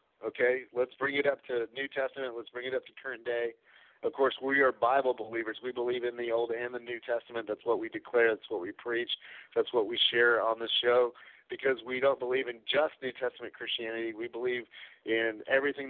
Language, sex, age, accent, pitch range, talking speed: English, male, 50-69, American, 120-155 Hz, 220 wpm